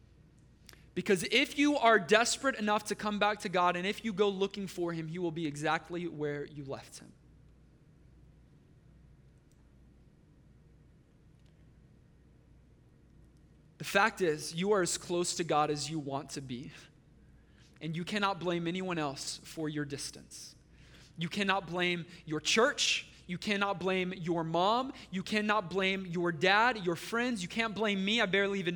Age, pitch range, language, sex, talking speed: 20-39, 175-245 Hz, English, male, 150 wpm